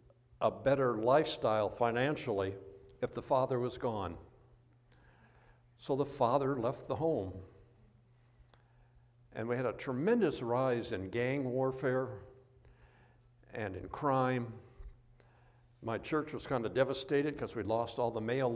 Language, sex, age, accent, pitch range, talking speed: English, male, 60-79, American, 115-135 Hz, 125 wpm